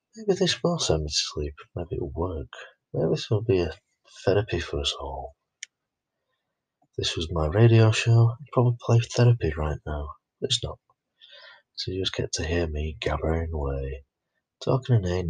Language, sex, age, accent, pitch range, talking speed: English, male, 30-49, British, 75-125 Hz, 175 wpm